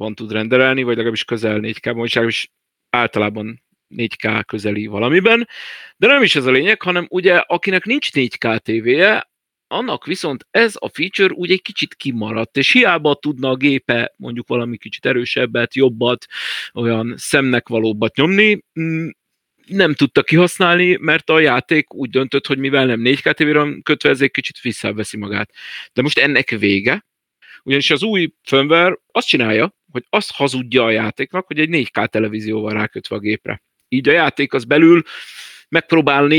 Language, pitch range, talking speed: Hungarian, 115-160 Hz, 155 wpm